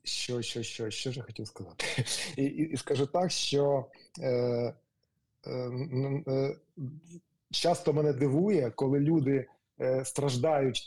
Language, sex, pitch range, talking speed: Ukrainian, male, 120-145 Hz, 140 wpm